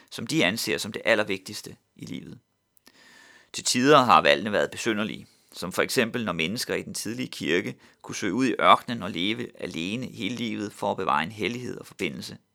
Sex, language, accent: male, Danish, native